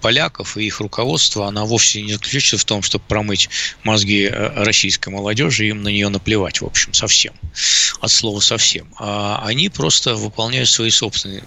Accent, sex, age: native, male, 20-39